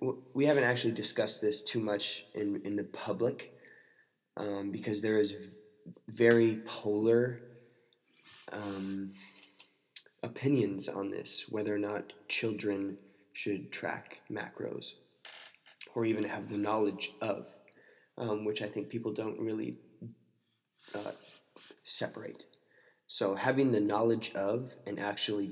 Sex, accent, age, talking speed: male, American, 20-39, 120 wpm